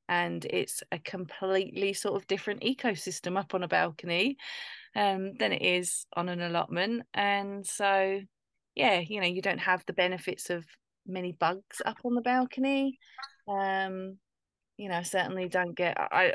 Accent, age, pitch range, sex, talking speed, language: British, 20-39, 180-235 Hz, female, 160 wpm, English